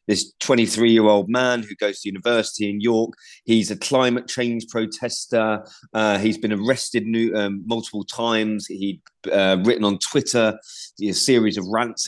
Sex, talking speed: male, 150 wpm